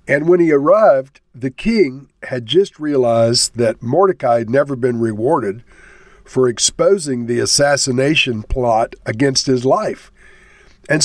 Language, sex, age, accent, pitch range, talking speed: English, male, 50-69, American, 130-180 Hz, 130 wpm